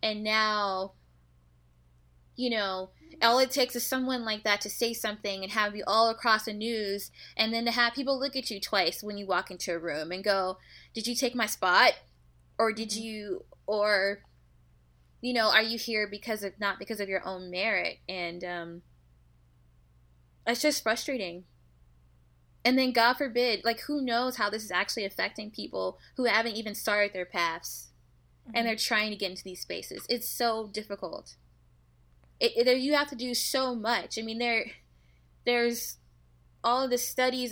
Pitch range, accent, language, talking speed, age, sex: 145-235 Hz, American, English, 175 wpm, 20-39, female